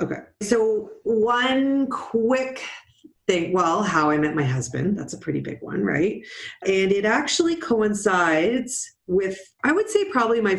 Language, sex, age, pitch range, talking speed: English, female, 40-59, 145-215 Hz, 155 wpm